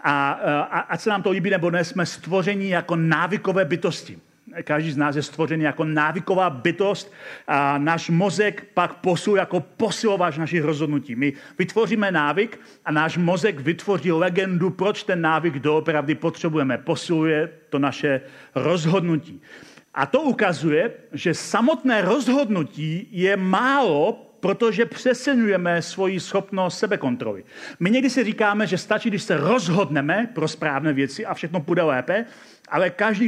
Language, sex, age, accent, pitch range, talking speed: Czech, male, 40-59, native, 160-200 Hz, 140 wpm